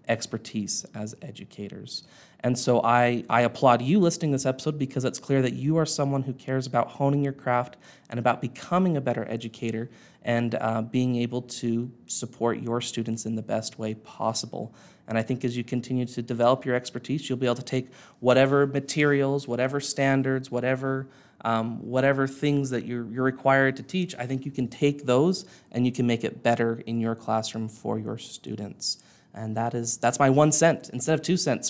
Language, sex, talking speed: English, male, 195 wpm